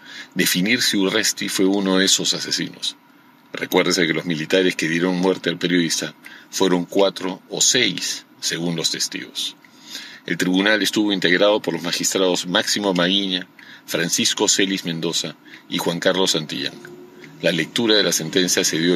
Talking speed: 150 wpm